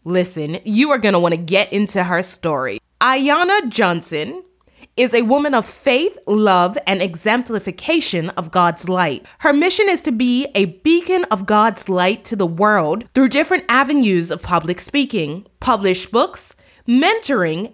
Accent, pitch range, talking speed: American, 190-280 Hz, 155 wpm